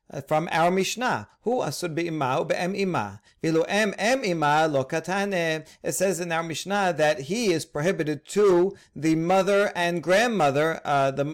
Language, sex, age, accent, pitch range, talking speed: English, male, 40-59, American, 140-180 Hz, 105 wpm